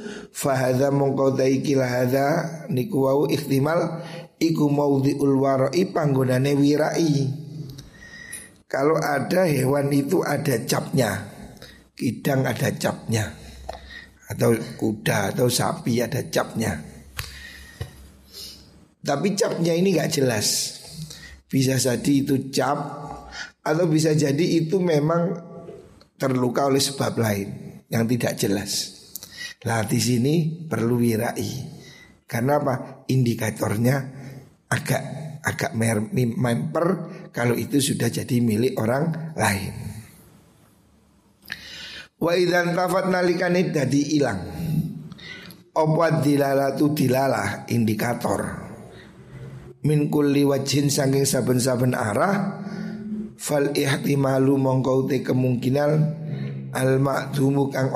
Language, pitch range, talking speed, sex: Indonesian, 125-160 Hz, 80 wpm, male